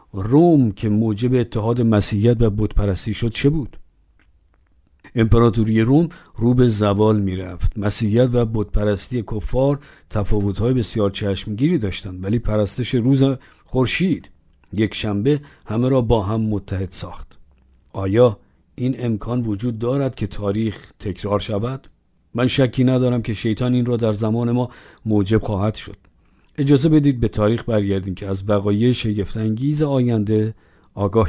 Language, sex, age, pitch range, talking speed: Persian, male, 50-69, 100-130 Hz, 130 wpm